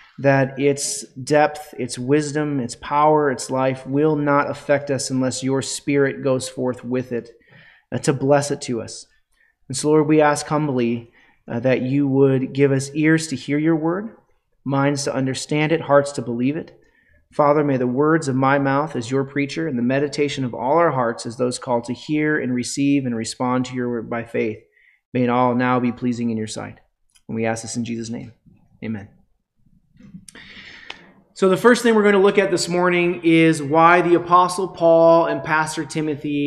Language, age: English, 30-49